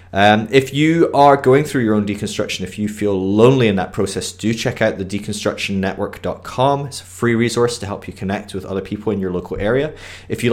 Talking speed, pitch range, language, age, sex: 215 wpm, 90-110 Hz, English, 20-39, male